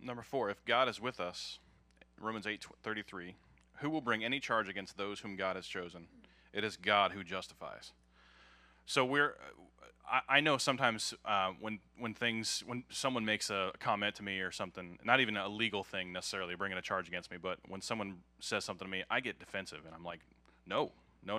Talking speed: 200 wpm